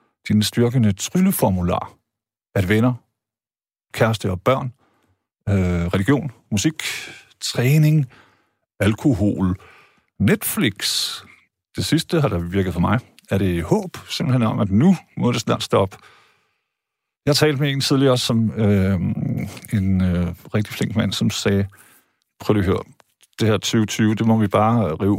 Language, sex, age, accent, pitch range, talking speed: Danish, male, 50-69, native, 100-125 Hz, 130 wpm